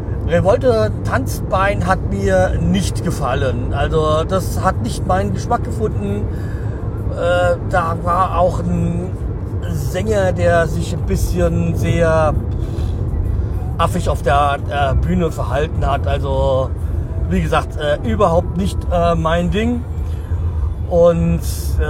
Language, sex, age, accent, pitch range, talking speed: German, male, 40-59, German, 80-100 Hz, 110 wpm